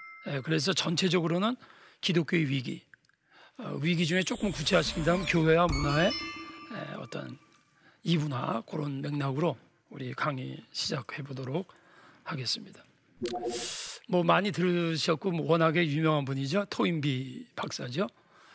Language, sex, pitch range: Korean, male, 155-205 Hz